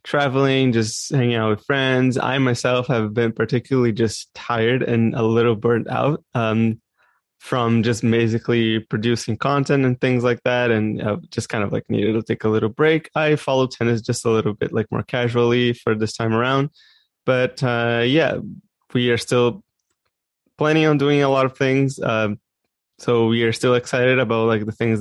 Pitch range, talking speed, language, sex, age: 115-130 Hz, 180 wpm, English, male, 20-39